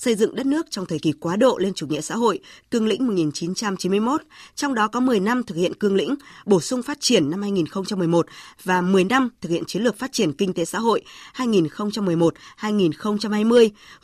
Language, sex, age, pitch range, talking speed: Vietnamese, female, 20-39, 180-235 Hz, 195 wpm